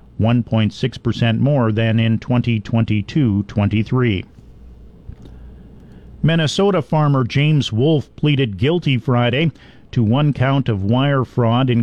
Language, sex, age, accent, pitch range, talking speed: English, male, 50-69, American, 105-130 Hz, 95 wpm